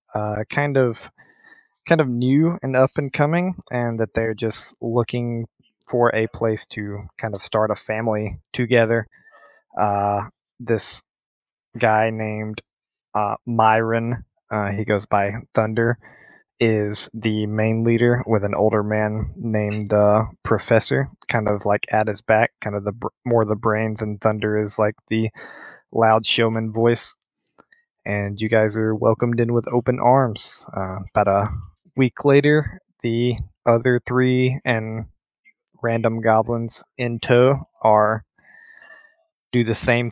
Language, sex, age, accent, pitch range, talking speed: English, male, 20-39, American, 105-120 Hz, 140 wpm